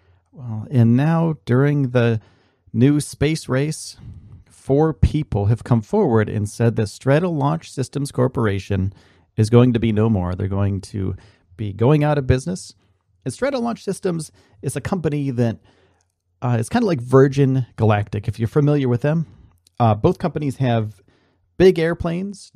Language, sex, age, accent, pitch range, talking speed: English, male, 40-59, American, 100-145 Hz, 155 wpm